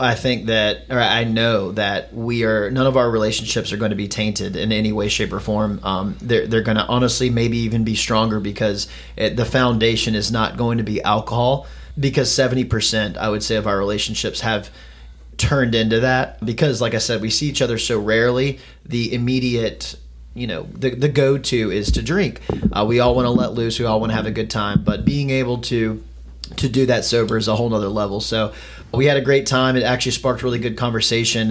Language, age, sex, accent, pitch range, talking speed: English, 30-49, male, American, 110-125 Hz, 215 wpm